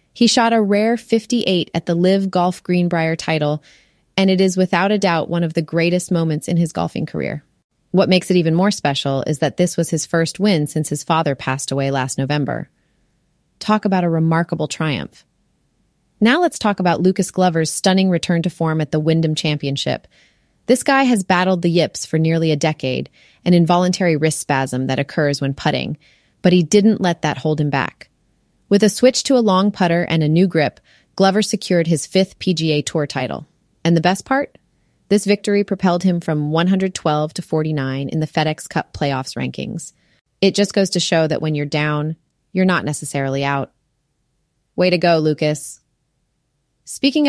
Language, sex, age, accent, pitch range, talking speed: English, female, 30-49, American, 150-190 Hz, 185 wpm